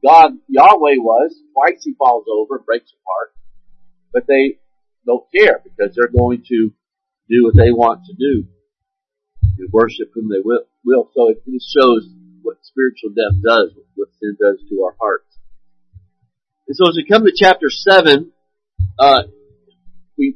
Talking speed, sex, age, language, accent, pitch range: 150 wpm, male, 50-69, English, American, 120-190 Hz